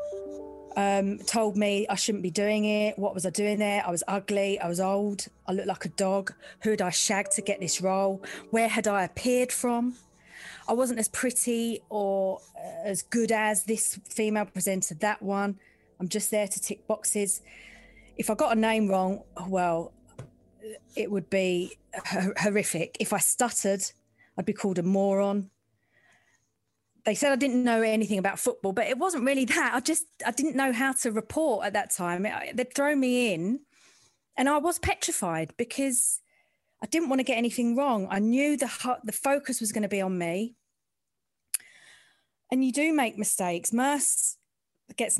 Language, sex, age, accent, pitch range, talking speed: English, female, 30-49, British, 195-250 Hz, 180 wpm